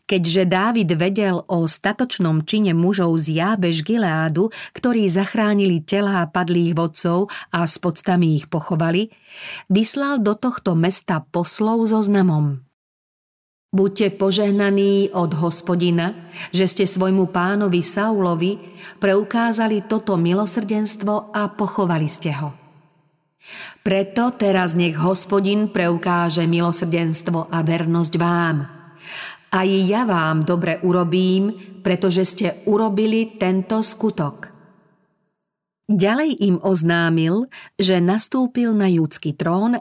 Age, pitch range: 40-59, 170-205 Hz